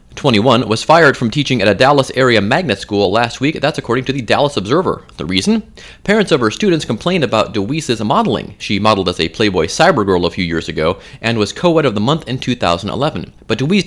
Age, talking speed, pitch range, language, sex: 30-49, 210 wpm, 105-170 Hz, English, male